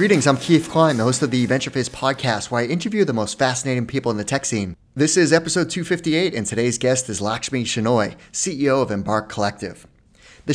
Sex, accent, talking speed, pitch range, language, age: male, American, 205 wpm, 110-150 Hz, English, 30-49